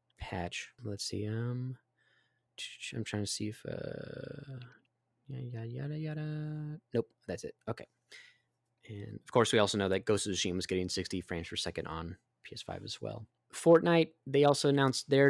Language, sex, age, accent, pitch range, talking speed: English, male, 20-39, American, 100-125 Hz, 170 wpm